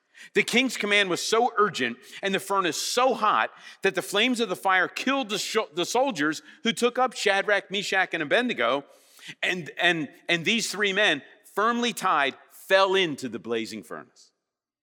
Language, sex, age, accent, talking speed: English, male, 50-69, American, 165 wpm